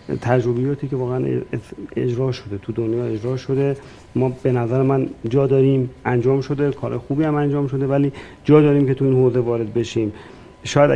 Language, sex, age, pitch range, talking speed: Persian, male, 40-59, 120-135 Hz, 175 wpm